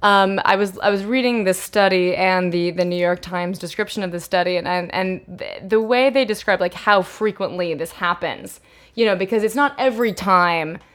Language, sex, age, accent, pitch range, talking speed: English, female, 20-39, American, 180-220 Hz, 210 wpm